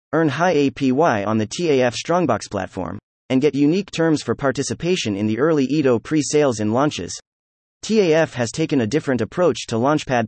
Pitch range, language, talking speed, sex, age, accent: 110-160 Hz, English, 170 wpm, male, 30-49, American